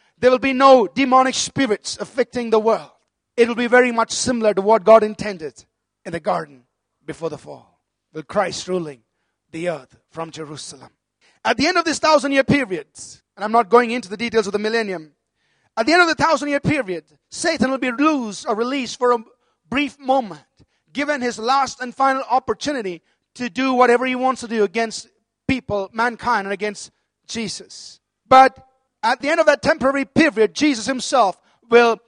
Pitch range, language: 215-265 Hz, English